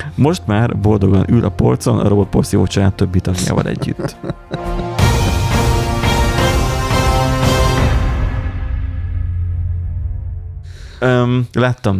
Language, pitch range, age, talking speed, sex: Hungarian, 95-115 Hz, 30-49, 65 wpm, male